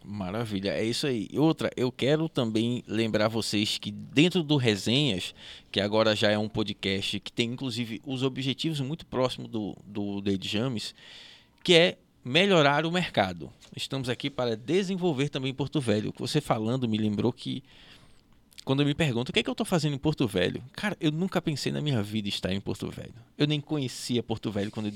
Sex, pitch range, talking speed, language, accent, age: male, 105-150 Hz, 195 wpm, Portuguese, Brazilian, 20-39